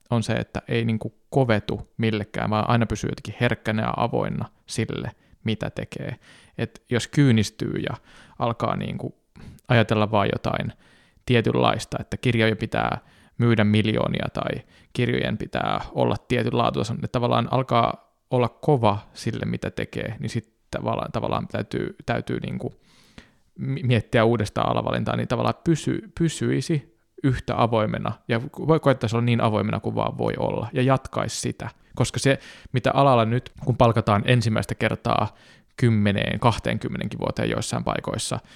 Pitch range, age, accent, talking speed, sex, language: 110-125 Hz, 20-39, native, 130 wpm, male, Finnish